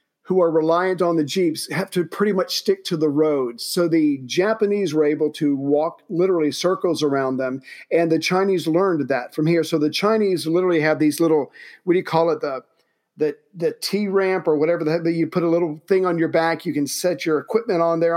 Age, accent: 50-69, American